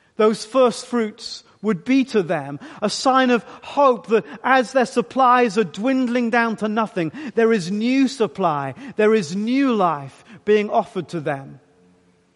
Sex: male